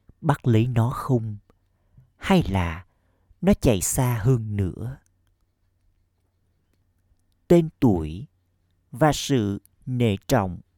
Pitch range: 90-125 Hz